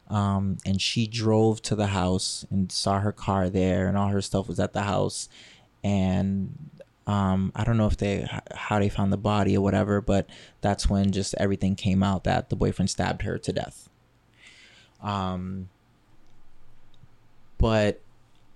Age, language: 20-39, English